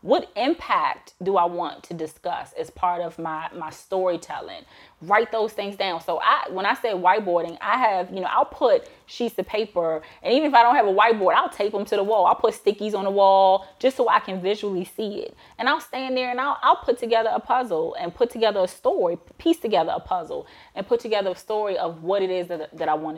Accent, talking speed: American, 240 wpm